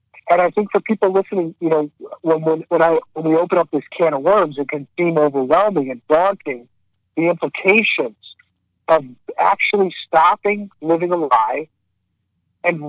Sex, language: male, English